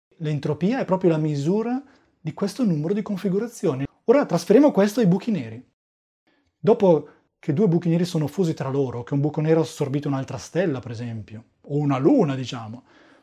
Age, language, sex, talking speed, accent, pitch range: 30-49, Italian, male, 175 wpm, native, 140-190 Hz